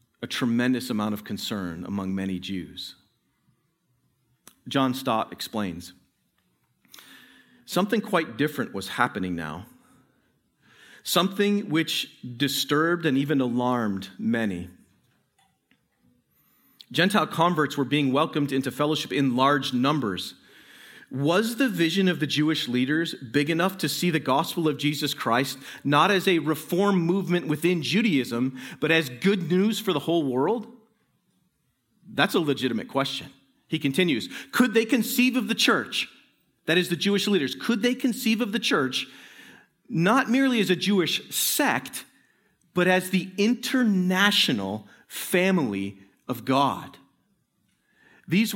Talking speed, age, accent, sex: 125 wpm, 40-59, American, male